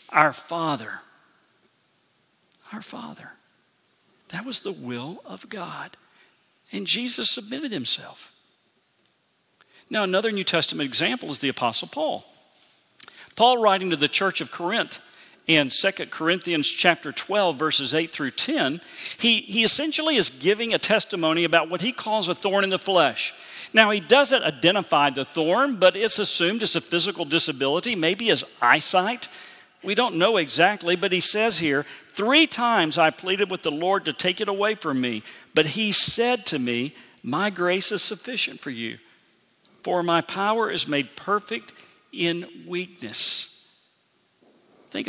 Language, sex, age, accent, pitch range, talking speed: English, male, 50-69, American, 155-210 Hz, 150 wpm